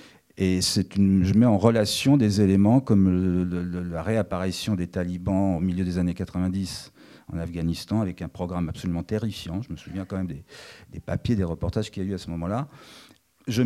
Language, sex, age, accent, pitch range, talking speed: French, male, 40-59, French, 90-120 Hz, 185 wpm